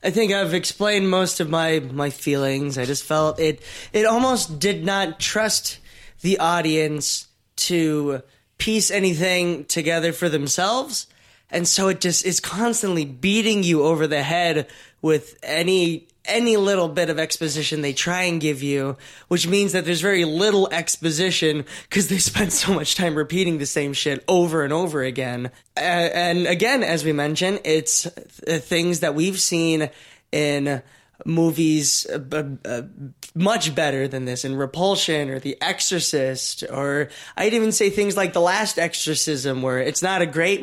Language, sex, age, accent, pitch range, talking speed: English, male, 20-39, American, 140-175 Hz, 160 wpm